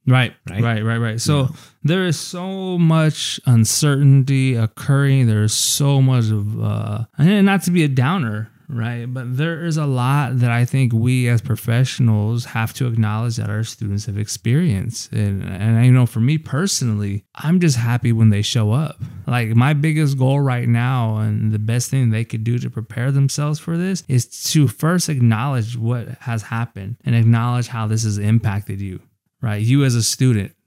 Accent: American